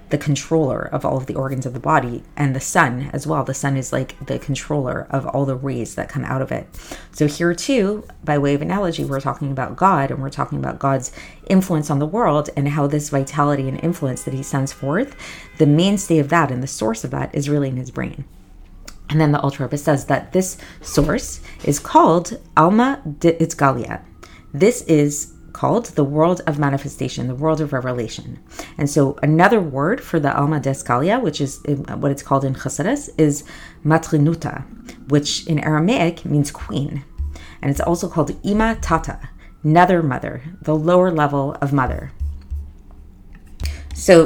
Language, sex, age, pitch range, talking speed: English, female, 30-49, 135-160 Hz, 185 wpm